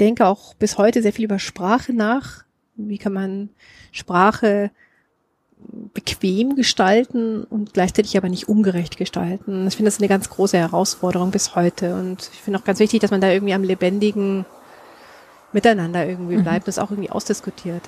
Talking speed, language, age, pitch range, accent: 165 wpm, German, 30-49, 185-220 Hz, German